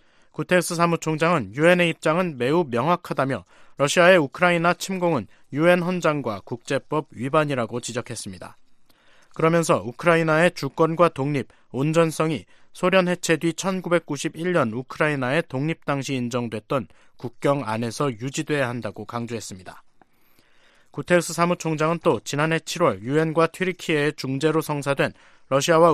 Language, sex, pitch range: Korean, male, 130-170 Hz